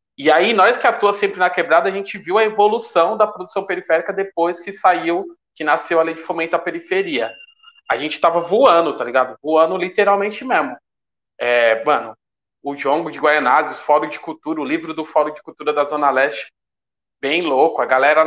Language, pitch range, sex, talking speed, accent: Portuguese, 145-185 Hz, male, 195 wpm, Brazilian